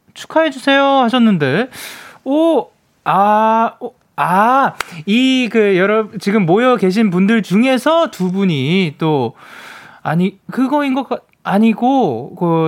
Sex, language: male, Korean